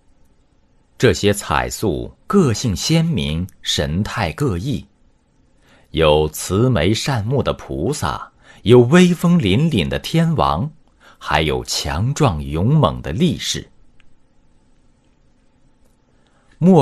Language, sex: Chinese, male